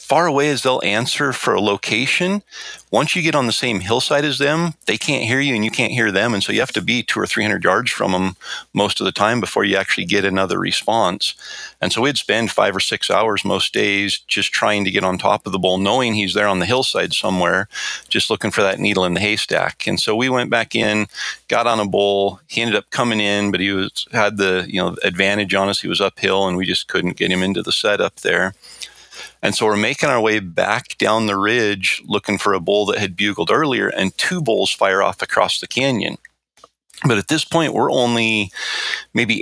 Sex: male